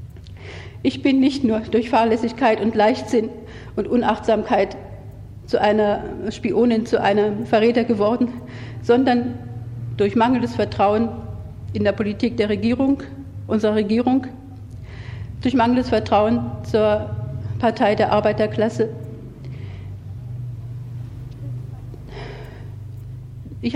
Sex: female